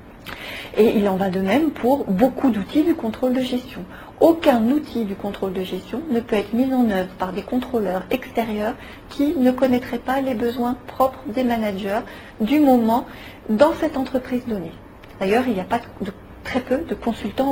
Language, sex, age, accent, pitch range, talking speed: French, female, 40-59, French, 210-255 Hz, 185 wpm